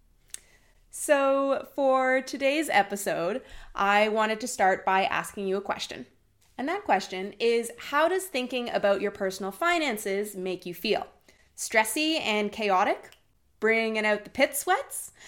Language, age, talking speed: English, 20-39, 140 wpm